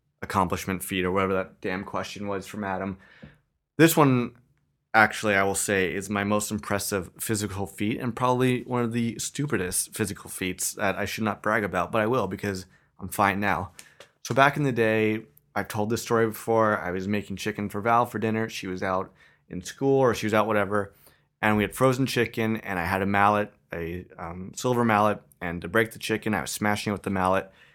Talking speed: 210 wpm